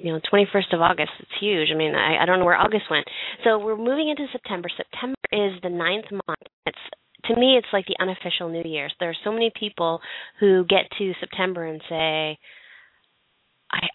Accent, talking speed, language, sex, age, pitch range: American, 205 wpm, English, female, 20-39, 165-195 Hz